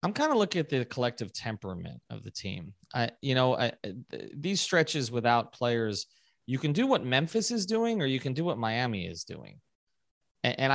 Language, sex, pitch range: English, male, 115-160 Hz